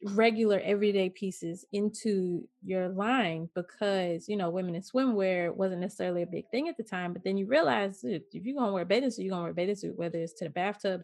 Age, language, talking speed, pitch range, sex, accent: 20-39, English, 230 wpm, 185-235 Hz, female, American